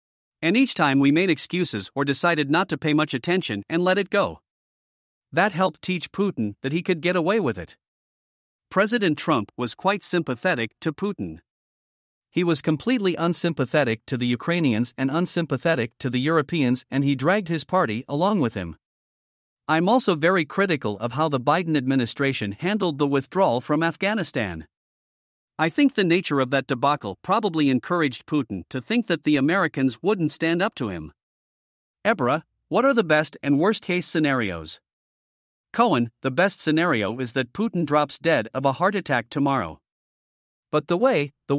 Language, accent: English, American